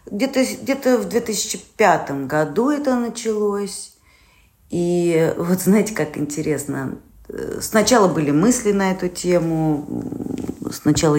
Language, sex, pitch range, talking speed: Russian, female, 145-190 Hz, 95 wpm